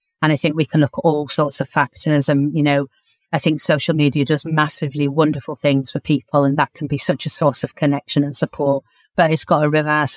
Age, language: 40-59, English